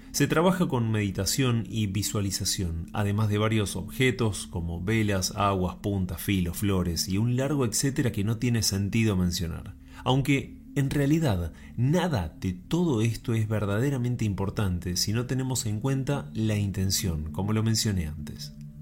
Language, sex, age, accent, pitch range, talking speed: Spanish, male, 30-49, Argentinian, 100-135 Hz, 145 wpm